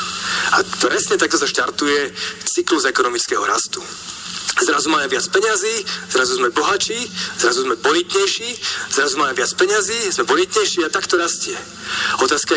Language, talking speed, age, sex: Slovak, 135 wpm, 40-59, male